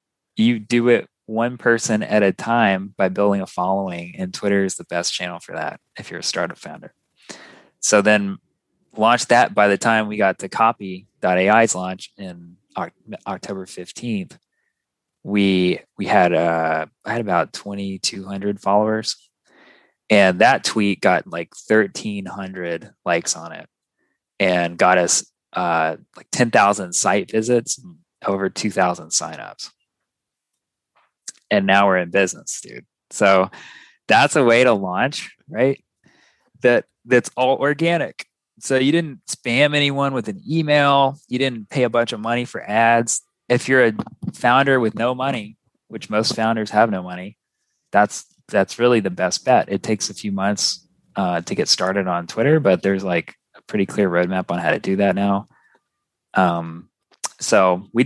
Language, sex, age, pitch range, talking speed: English, male, 20-39, 95-125 Hz, 155 wpm